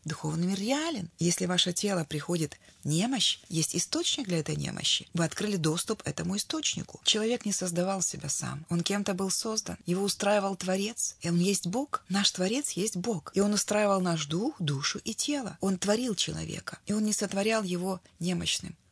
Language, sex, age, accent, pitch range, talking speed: Russian, female, 20-39, native, 160-200 Hz, 175 wpm